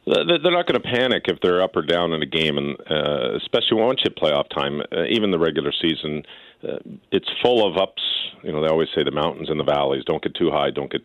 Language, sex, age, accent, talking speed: English, male, 50-69, American, 250 wpm